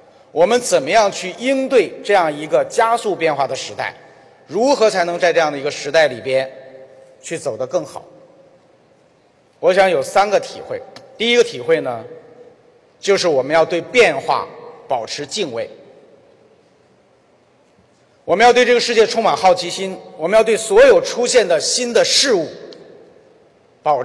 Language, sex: Chinese, male